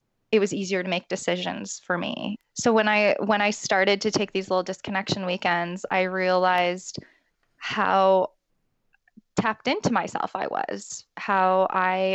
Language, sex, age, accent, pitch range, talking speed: English, female, 20-39, American, 185-215 Hz, 150 wpm